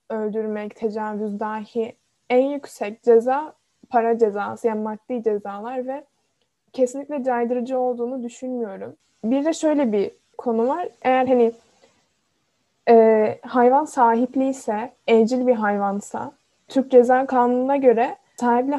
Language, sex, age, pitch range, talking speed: Turkish, female, 10-29, 225-265 Hz, 115 wpm